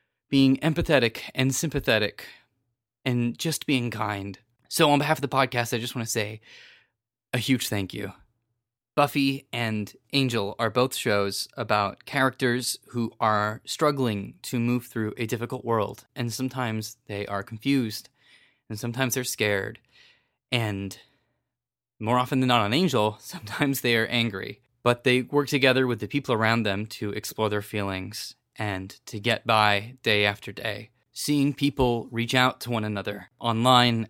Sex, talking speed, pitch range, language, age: male, 155 wpm, 110-130 Hz, English, 20-39